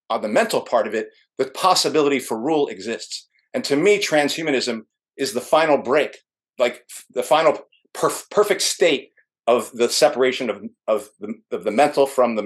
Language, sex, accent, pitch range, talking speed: English, male, American, 130-190 Hz, 185 wpm